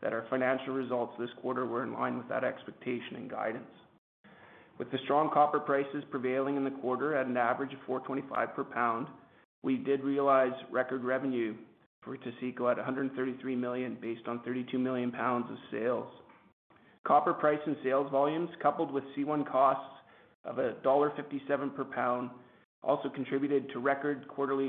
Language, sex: English, male